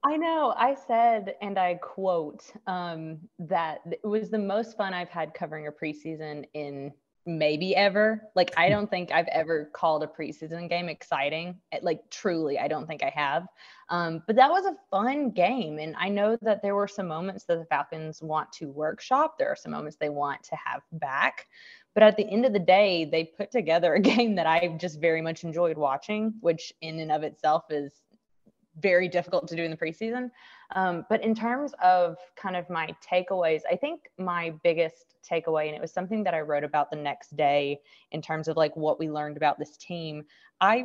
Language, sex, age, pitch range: English, female, 20-39, 155-205 Hz